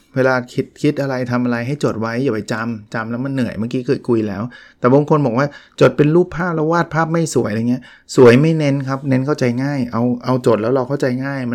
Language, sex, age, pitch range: Thai, male, 20-39, 115-140 Hz